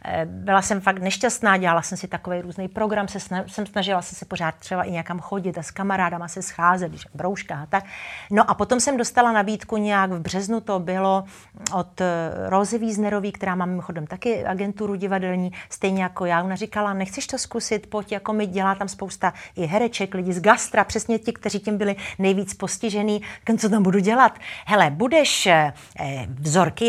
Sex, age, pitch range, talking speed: female, 40-59, 185-225 Hz, 185 wpm